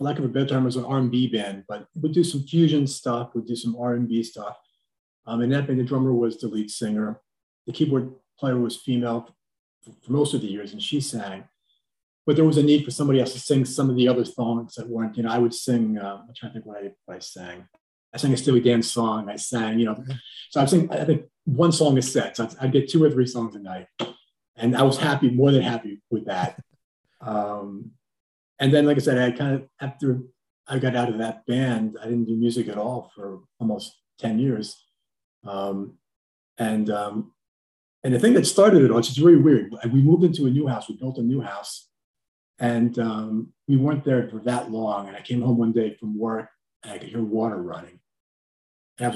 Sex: male